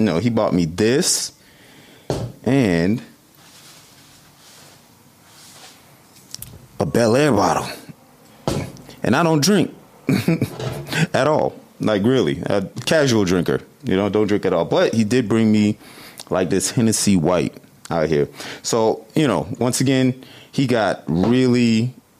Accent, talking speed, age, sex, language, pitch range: American, 120 wpm, 30-49, male, English, 95-115 Hz